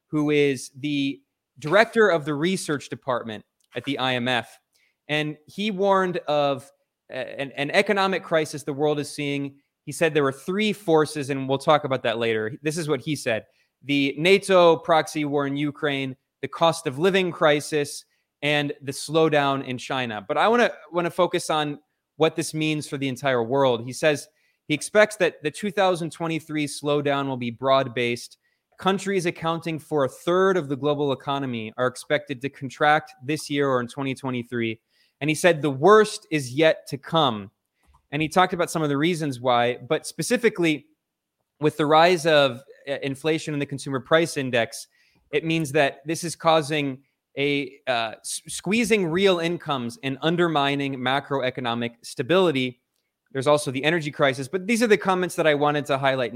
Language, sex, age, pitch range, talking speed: English, male, 20-39, 135-165 Hz, 170 wpm